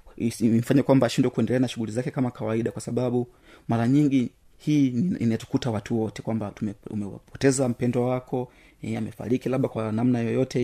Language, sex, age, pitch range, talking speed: Swahili, male, 30-49, 110-130 Hz, 145 wpm